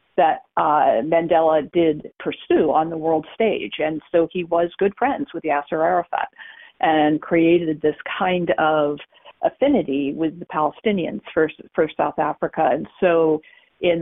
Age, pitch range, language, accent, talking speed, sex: 50-69, 155-185 Hz, English, American, 145 wpm, female